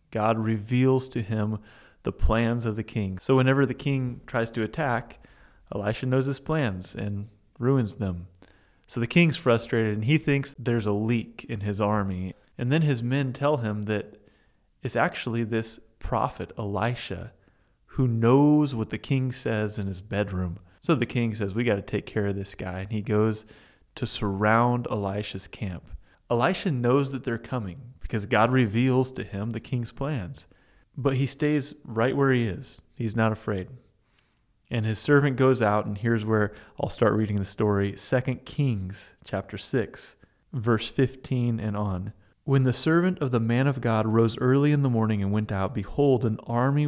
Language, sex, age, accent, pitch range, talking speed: English, male, 30-49, American, 105-130 Hz, 180 wpm